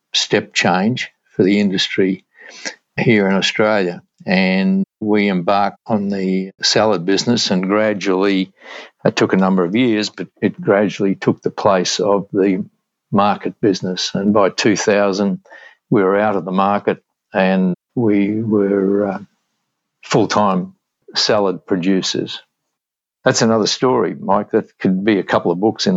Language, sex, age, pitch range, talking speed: English, male, 60-79, 95-110 Hz, 140 wpm